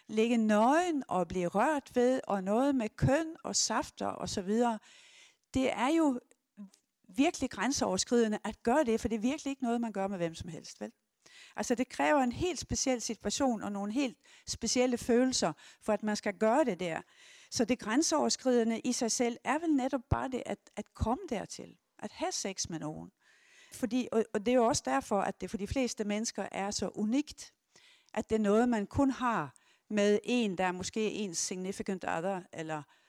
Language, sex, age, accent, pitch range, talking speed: Danish, female, 60-79, native, 200-255 Hz, 190 wpm